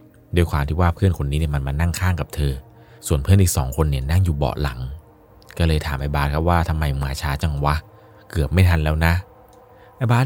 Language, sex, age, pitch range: Thai, male, 30-49, 75-95 Hz